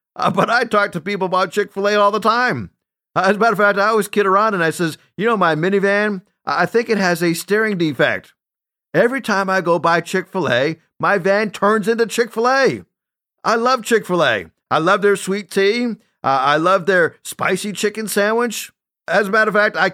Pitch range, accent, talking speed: 155-210 Hz, American, 225 wpm